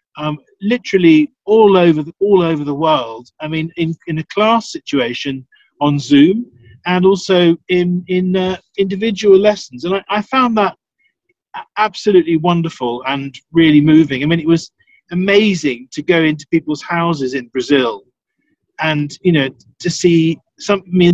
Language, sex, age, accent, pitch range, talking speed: English, male, 40-59, British, 145-190 Hz, 150 wpm